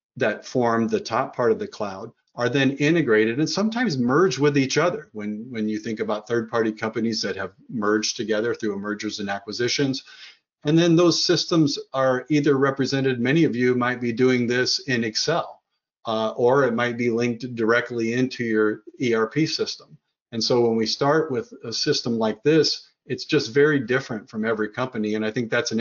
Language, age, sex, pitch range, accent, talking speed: English, 50-69, male, 110-140 Hz, American, 190 wpm